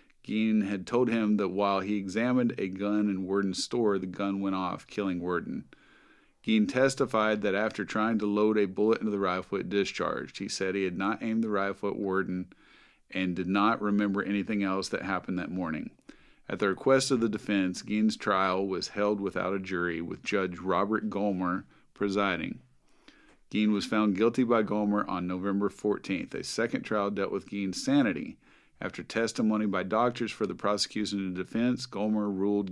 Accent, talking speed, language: American, 180 wpm, English